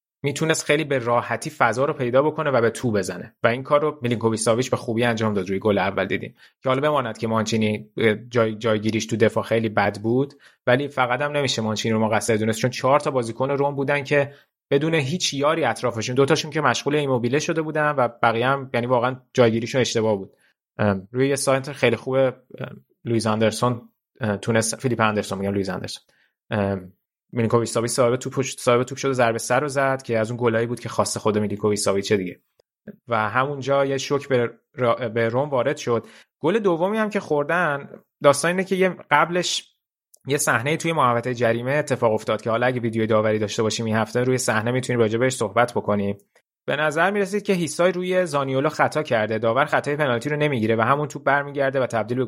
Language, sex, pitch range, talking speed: Persian, male, 110-140 Hz, 190 wpm